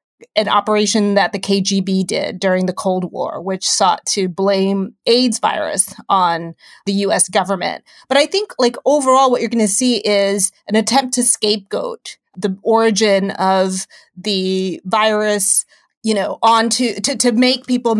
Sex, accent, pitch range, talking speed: female, American, 195-225 Hz, 155 wpm